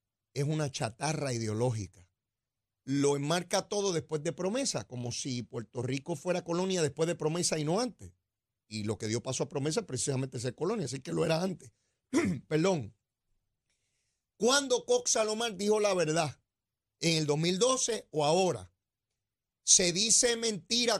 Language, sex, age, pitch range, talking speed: Spanish, male, 40-59, 125-195 Hz, 150 wpm